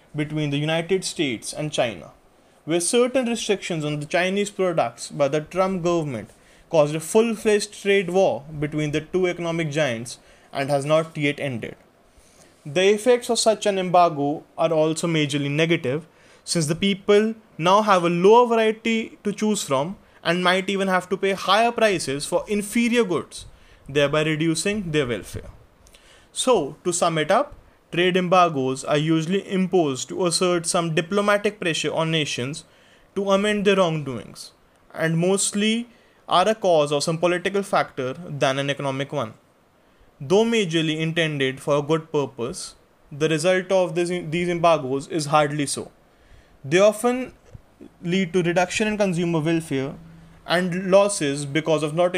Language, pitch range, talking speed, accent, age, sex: English, 150-195 Hz, 150 wpm, Indian, 20-39, male